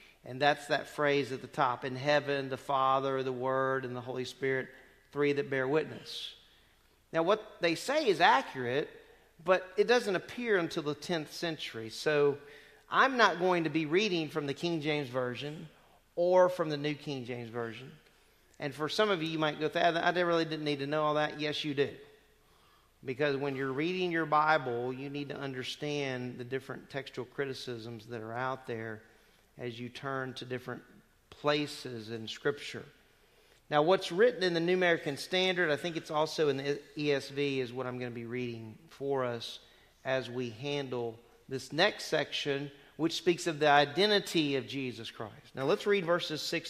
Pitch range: 130-170 Hz